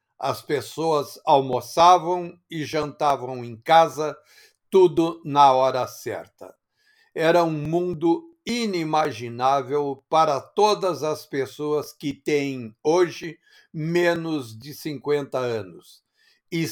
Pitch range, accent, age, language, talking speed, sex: 145-180 Hz, Brazilian, 60-79, Portuguese, 95 wpm, male